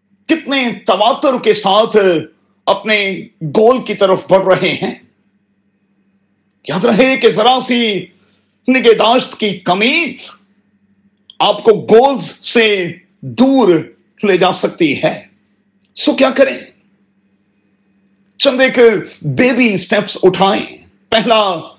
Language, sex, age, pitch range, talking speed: Urdu, male, 40-59, 195-240 Hz, 105 wpm